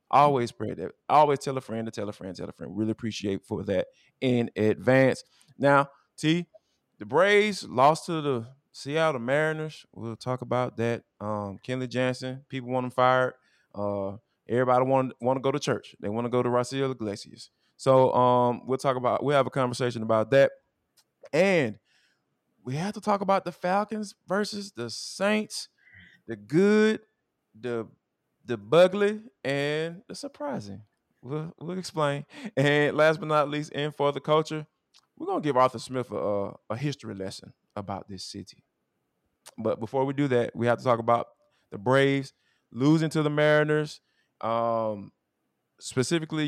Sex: male